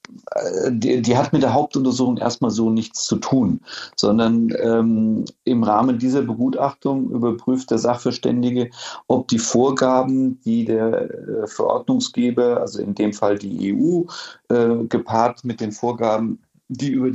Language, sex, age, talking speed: German, male, 40-59, 140 wpm